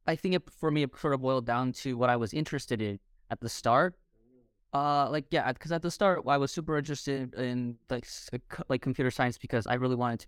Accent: American